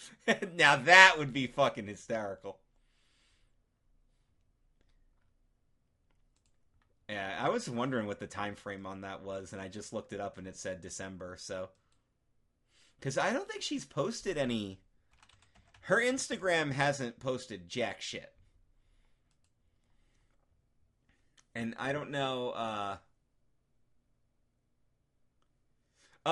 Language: English